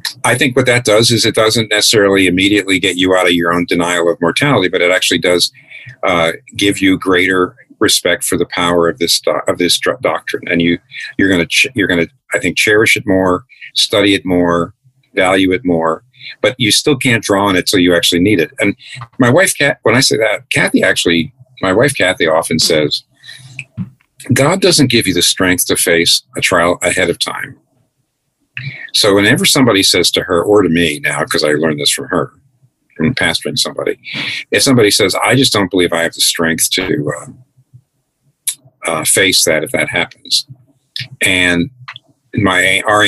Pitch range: 90-130 Hz